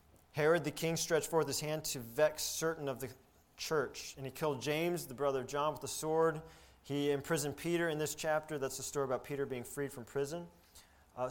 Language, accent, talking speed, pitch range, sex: English, American, 210 wpm, 125-155 Hz, male